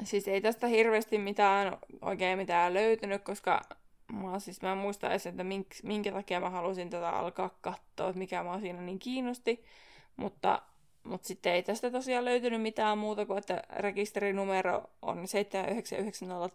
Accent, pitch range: native, 185-220 Hz